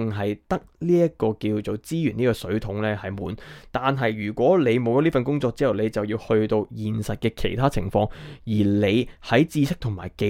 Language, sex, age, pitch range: Chinese, male, 20-39, 105-130 Hz